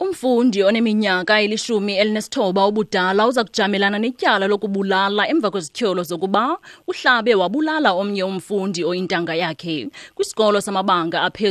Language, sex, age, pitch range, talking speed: English, female, 30-49, 180-215 Hz, 130 wpm